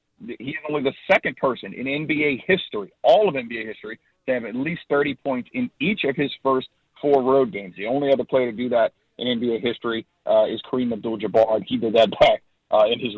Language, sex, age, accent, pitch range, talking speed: English, male, 50-69, American, 120-150 Hz, 220 wpm